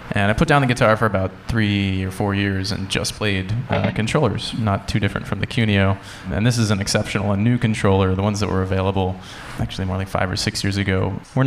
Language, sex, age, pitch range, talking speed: English, male, 20-39, 95-110 Hz, 235 wpm